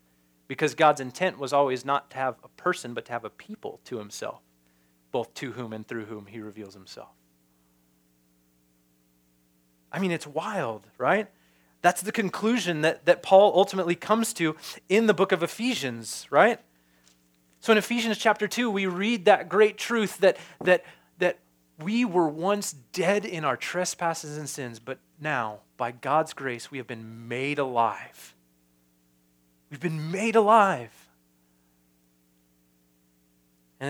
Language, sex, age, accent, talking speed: English, male, 30-49, American, 145 wpm